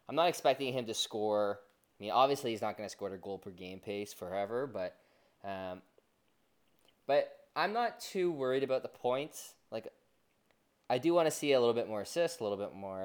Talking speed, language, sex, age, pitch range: 205 wpm, English, male, 20-39, 100-135 Hz